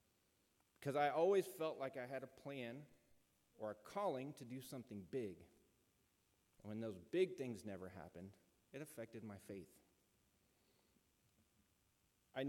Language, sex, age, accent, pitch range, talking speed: English, male, 30-49, American, 100-135 Hz, 130 wpm